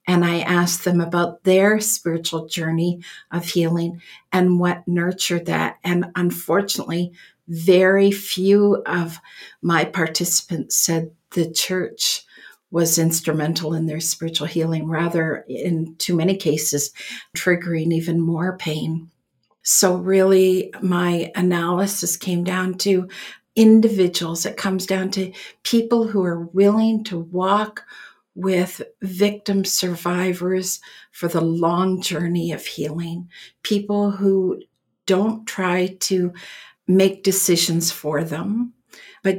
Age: 50-69